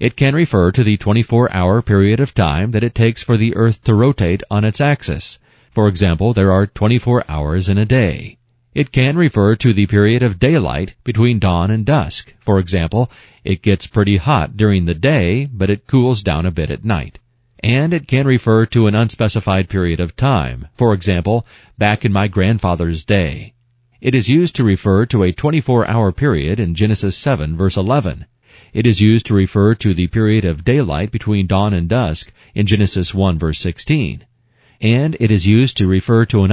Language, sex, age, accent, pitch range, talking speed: English, male, 40-59, American, 95-120 Hz, 190 wpm